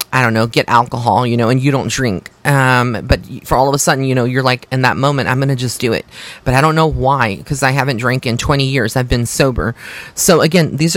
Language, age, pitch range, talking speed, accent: English, 30-49, 125-150 Hz, 270 wpm, American